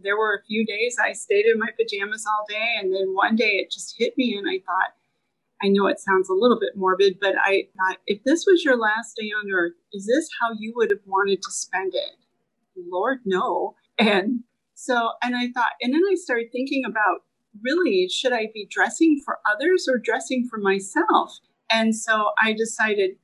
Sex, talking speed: female, 205 wpm